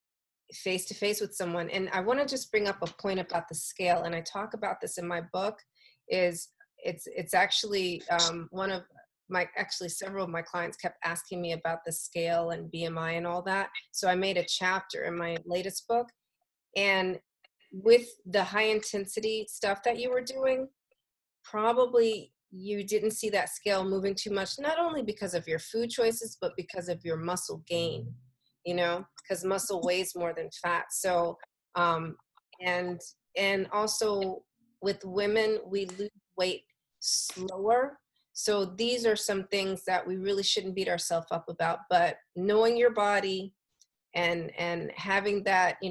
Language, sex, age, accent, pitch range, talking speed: English, female, 30-49, American, 175-215 Hz, 170 wpm